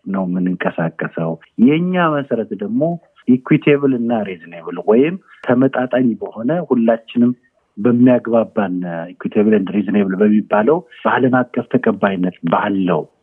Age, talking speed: 50-69, 100 wpm